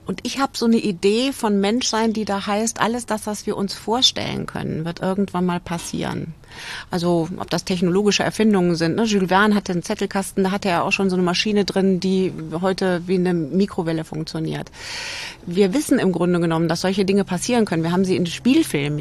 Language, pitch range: German, 175-210 Hz